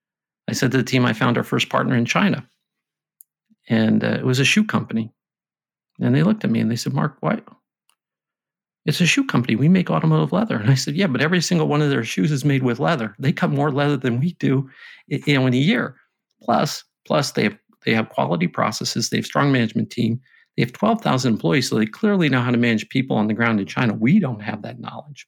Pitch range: 115-150 Hz